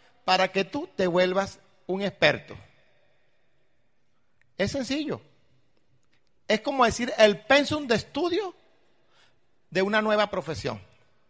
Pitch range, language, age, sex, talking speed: 185-245 Hz, Spanish, 50-69, male, 105 wpm